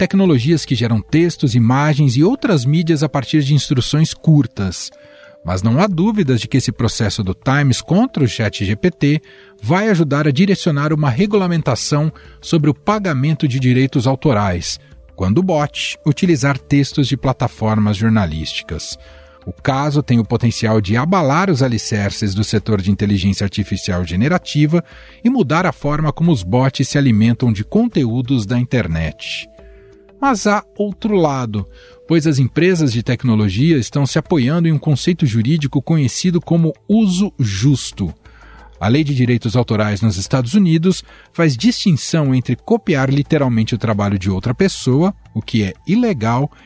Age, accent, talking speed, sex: 40-59, Brazilian, 150 wpm, male